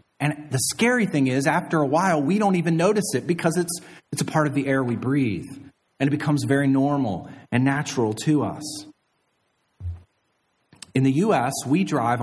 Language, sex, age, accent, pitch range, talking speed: English, male, 40-59, American, 115-150 Hz, 180 wpm